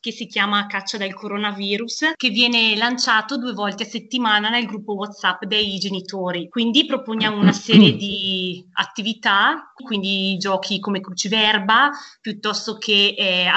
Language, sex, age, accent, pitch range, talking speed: Italian, female, 20-39, native, 190-225 Hz, 135 wpm